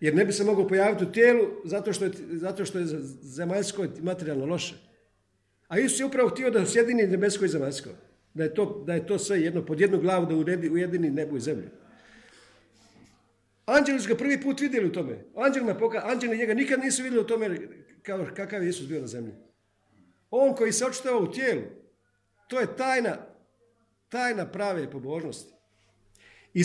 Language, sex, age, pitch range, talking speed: Croatian, male, 50-69, 160-230 Hz, 170 wpm